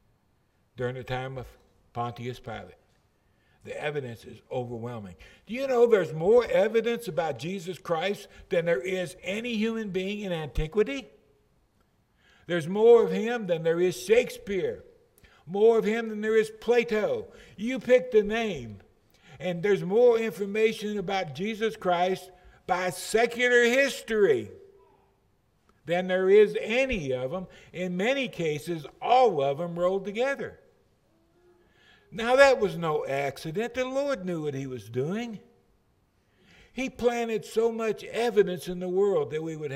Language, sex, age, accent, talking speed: English, male, 60-79, American, 140 wpm